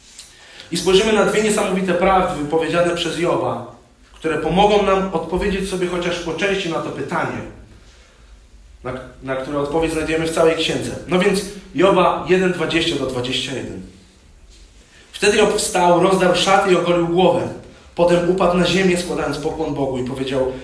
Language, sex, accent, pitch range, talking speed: Polish, male, native, 125-180 Hz, 150 wpm